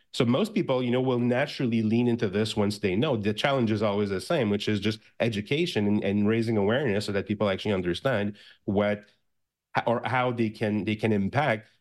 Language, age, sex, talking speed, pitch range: English, 30-49, male, 205 wpm, 110-130 Hz